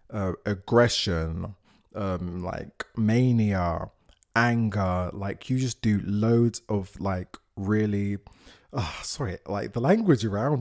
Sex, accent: male, British